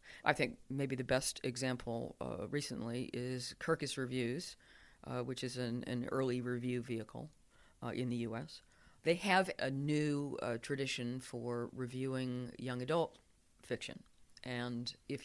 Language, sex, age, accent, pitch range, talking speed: English, female, 40-59, American, 120-140 Hz, 140 wpm